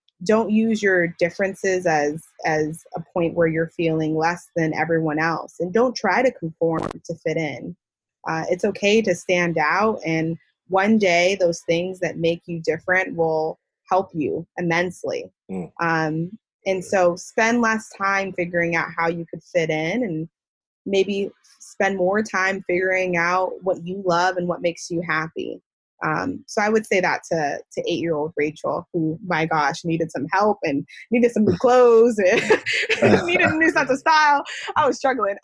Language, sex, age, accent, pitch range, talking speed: English, female, 20-39, American, 170-240 Hz, 175 wpm